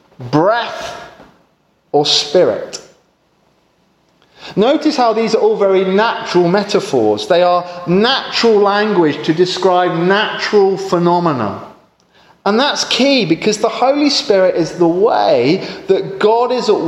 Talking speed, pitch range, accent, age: 115 wpm, 165-240 Hz, British, 30-49